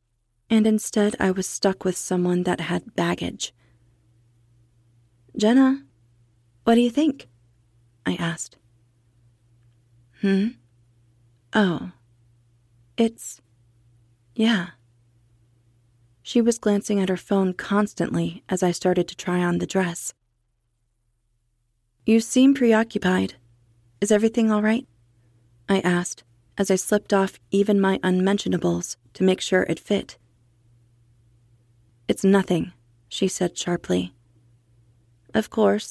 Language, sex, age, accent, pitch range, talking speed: English, female, 30-49, American, 120-190 Hz, 105 wpm